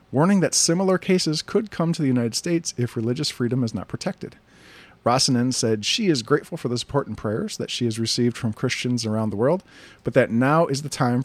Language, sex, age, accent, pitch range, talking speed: English, male, 40-59, American, 115-150 Hz, 220 wpm